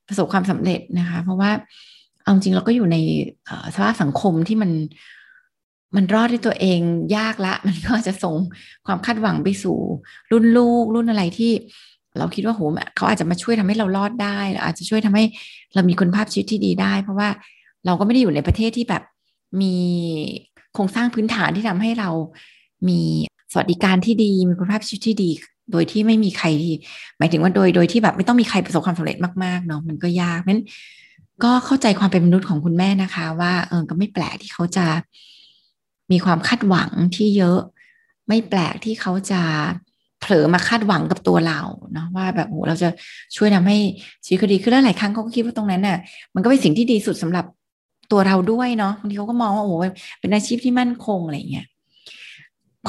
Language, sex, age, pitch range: Thai, female, 20-39, 175-220 Hz